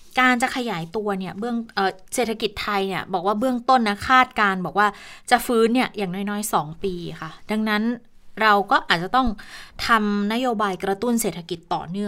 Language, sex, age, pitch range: Thai, female, 20-39, 185-230 Hz